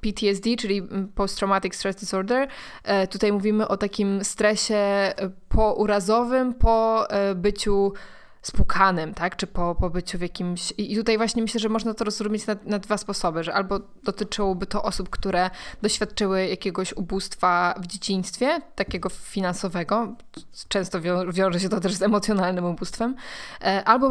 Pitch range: 190-215 Hz